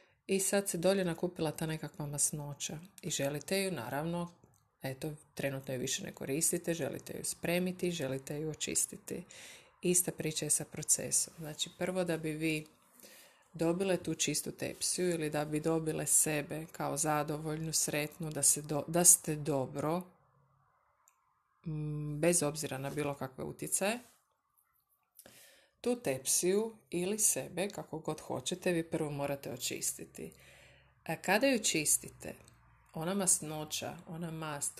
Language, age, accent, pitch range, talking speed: Croatian, 30-49, native, 145-175 Hz, 135 wpm